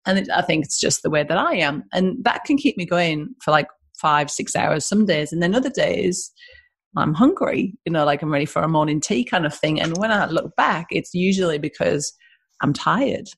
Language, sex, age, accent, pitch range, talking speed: English, female, 30-49, British, 160-200 Hz, 230 wpm